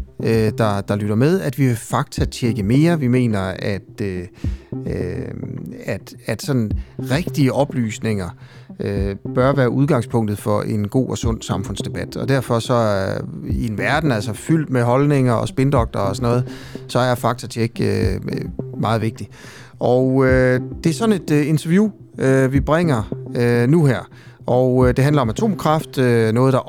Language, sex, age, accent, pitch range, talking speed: Danish, male, 30-49, native, 110-140 Hz, 165 wpm